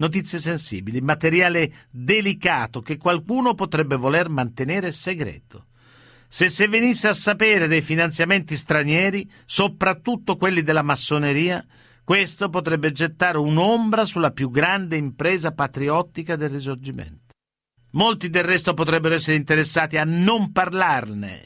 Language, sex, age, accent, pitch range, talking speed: Italian, male, 50-69, native, 140-185 Hz, 115 wpm